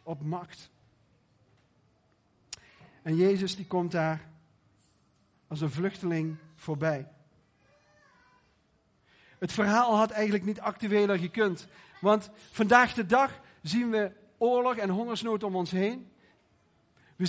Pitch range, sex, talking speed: 170-220 Hz, male, 110 wpm